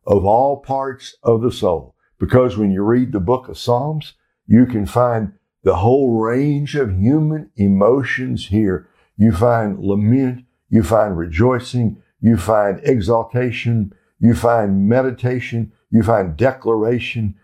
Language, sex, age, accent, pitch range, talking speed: English, male, 60-79, American, 100-130 Hz, 135 wpm